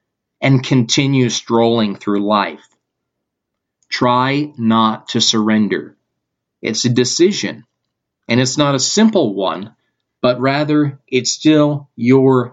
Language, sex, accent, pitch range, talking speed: English, male, American, 110-130 Hz, 110 wpm